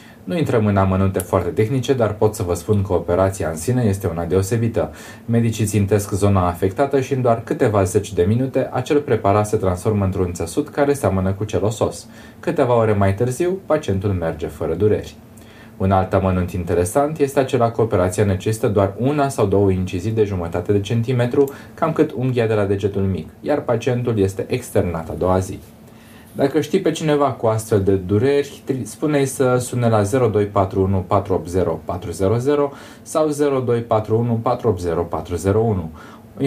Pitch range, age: 95-120 Hz, 20-39